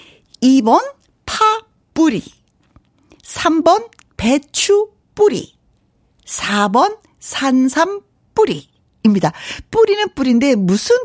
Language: Korean